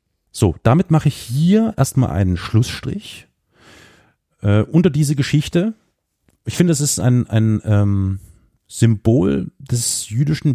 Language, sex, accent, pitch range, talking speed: German, male, German, 100-135 Hz, 125 wpm